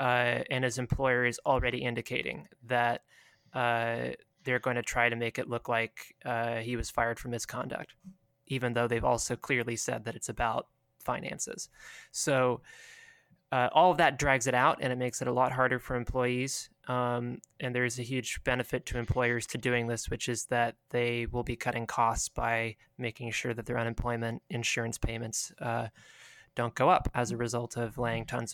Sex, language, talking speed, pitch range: male, English, 185 wpm, 120-130 Hz